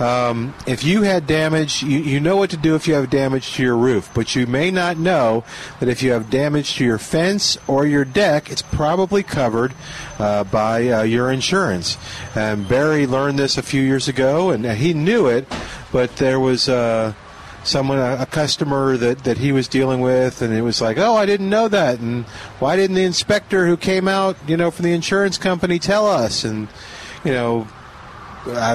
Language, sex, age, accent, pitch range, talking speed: English, male, 50-69, American, 115-155 Hz, 205 wpm